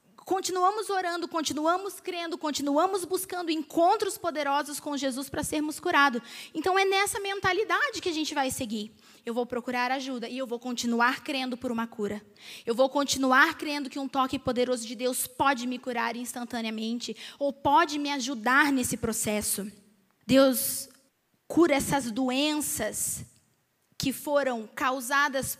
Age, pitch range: 20-39, 245-305 Hz